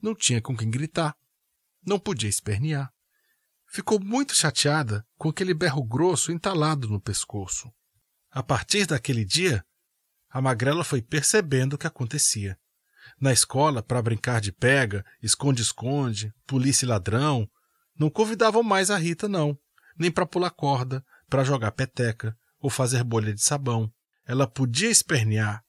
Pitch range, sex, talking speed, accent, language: 120-170 Hz, male, 140 wpm, Brazilian, Portuguese